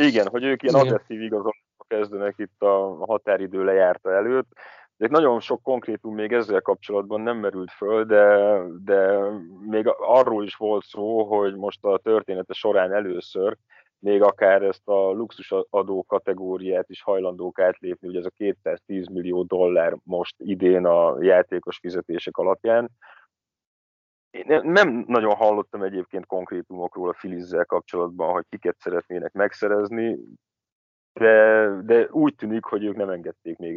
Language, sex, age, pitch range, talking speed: Hungarian, male, 30-49, 90-110 Hz, 140 wpm